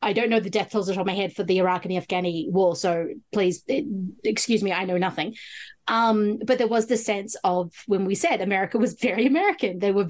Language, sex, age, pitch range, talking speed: English, female, 30-49, 195-235 Hz, 245 wpm